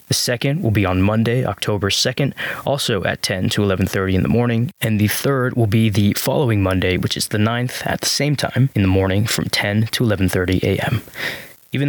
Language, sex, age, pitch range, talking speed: English, male, 20-39, 100-125 Hz, 205 wpm